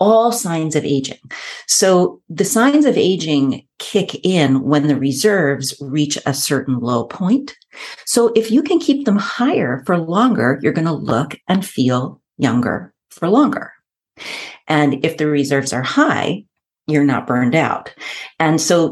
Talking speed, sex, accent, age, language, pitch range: 155 wpm, female, American, 40-59, English, 140-210 Hz